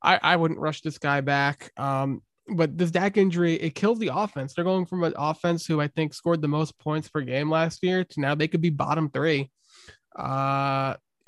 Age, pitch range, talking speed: 20-39, 145-175 Hz, 215 wpm